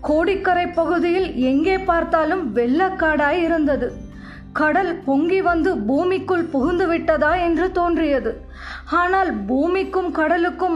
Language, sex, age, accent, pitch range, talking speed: Tamil, female, 20-39, native, 310-365 Hz, 90 wpm